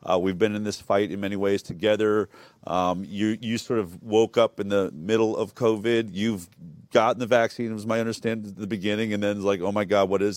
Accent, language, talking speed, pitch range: American, English, 245 wpm, 100-125 Hz